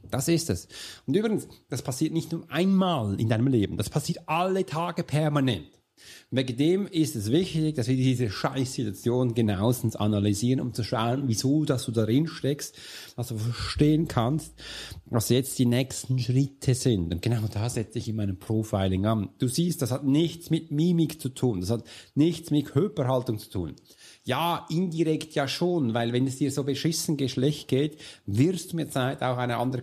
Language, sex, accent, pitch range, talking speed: German, male, German, 110-150 Hz, 185 wpm